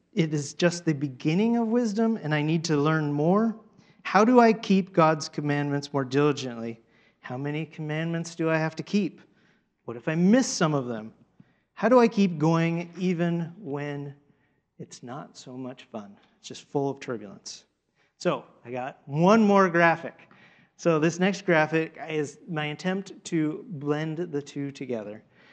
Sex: male